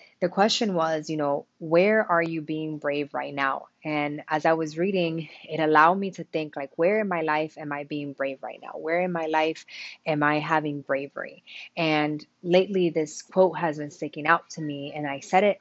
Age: 20-39